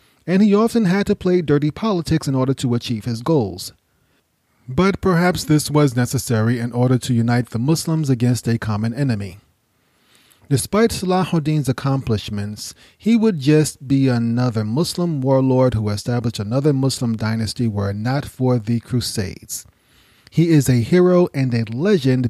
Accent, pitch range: American, 115-160 Hz